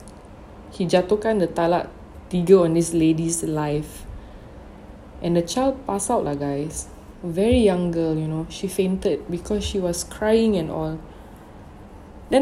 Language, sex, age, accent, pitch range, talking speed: English, female, 20-39, Malaysian, 160-200 Hz, 150 wpm